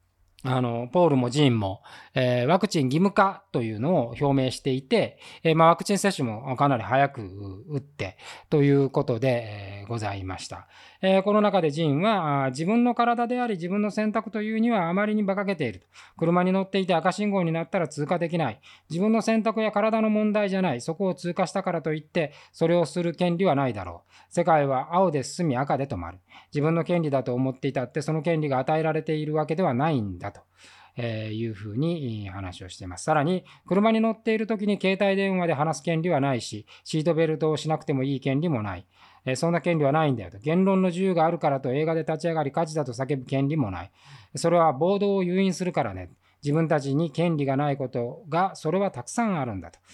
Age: 20-39